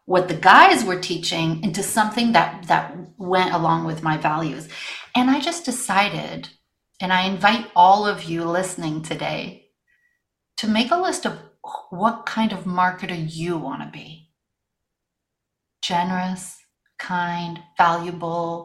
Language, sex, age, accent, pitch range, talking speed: English, female, 30-49, American, 170-220 Hz, 130 wpm